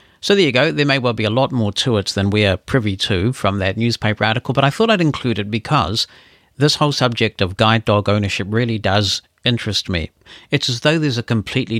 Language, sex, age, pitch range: English, male, 50-69, 100-125 Hz